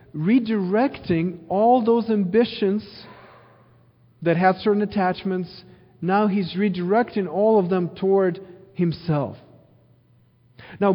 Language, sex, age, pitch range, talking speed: English, male, 40-59, 125-190 Hz, 95 wpm